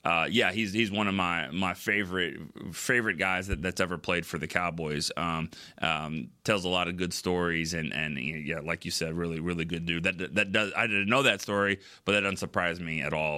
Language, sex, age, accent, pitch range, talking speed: English, male, 30-49, American, 90-125 Hz, 230 wpm